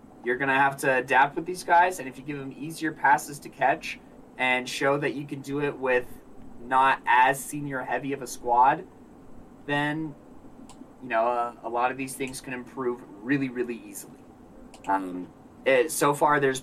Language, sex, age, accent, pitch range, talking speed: English, male, 20-39, American, 120-145 Hz, 190 wpm